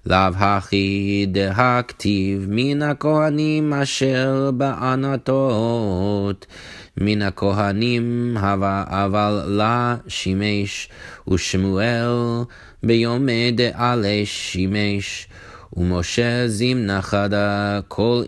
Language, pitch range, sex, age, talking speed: English, 95-120 Hz, male, 30-49, 80 wpm